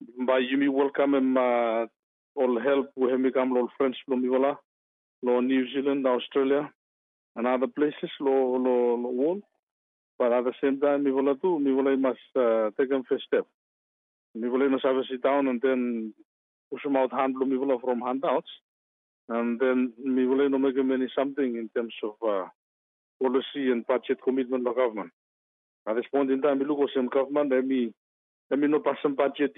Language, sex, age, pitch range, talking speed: English, male, 50-69, 125-140 Hz, 170 wpm